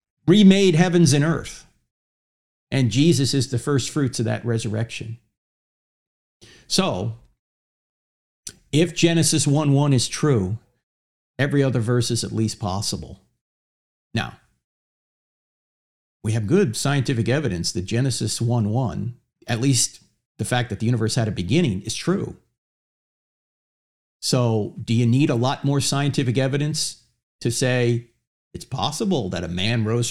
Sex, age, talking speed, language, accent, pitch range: male, 50-69, 130 wpm, English, American, 100-140 Hz